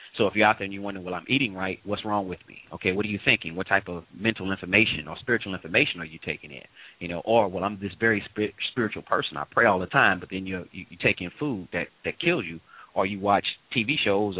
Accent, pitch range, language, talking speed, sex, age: American, 90-110 Hz, English, 265 wpm, male, 30-49